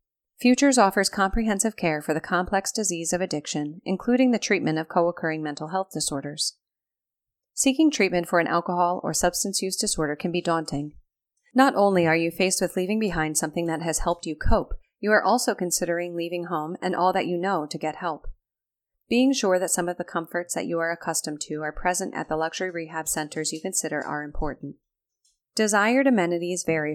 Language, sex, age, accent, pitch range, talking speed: English, female, 30-49, American, 160-195 Hz, 185 wpm